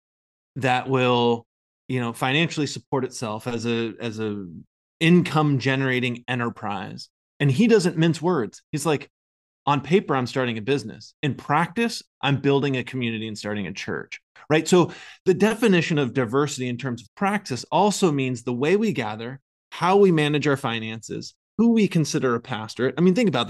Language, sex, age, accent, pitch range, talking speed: English, male, 20-39, American, 125-165 Hz, 170 wpm